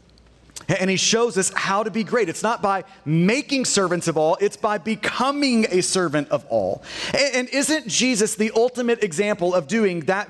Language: English